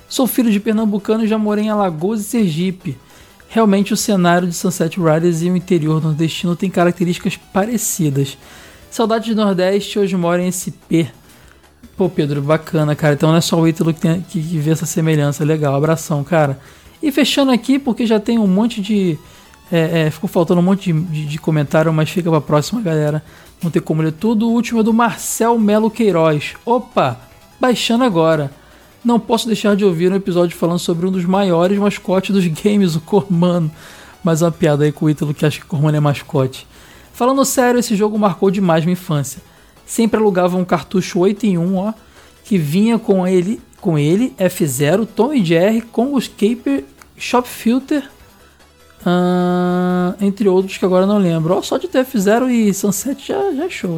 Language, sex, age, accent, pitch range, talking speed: English, male, 20-39, Brazilian, 165-215 Hz, 185 wpm